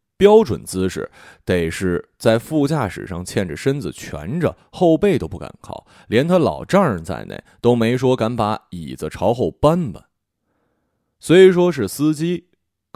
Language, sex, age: Chinese, male, 20-39